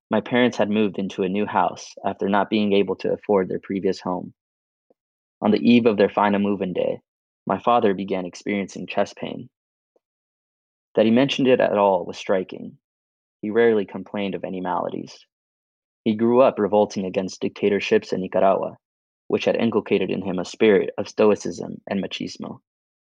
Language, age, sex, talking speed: English, 20-39, male, 165 wpm